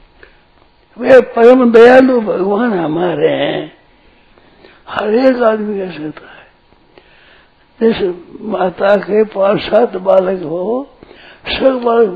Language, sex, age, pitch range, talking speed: Hindi, male, 60-79, 195-255 Hz, 100 wpm